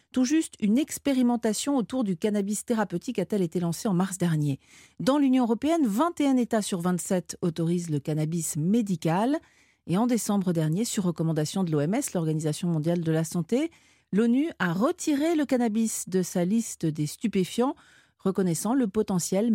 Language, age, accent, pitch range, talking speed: French, 40-59, French, 180-245 Hz, 155 wpm